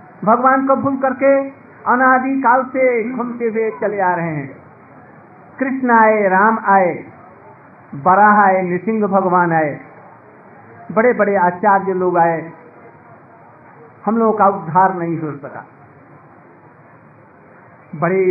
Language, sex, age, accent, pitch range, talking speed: Hindi, male, 50-69, native, 180-245 Hz, 115 wpm